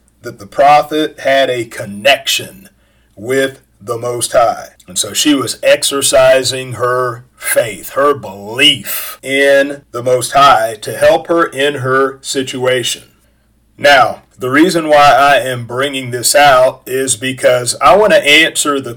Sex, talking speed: male, 140 wpm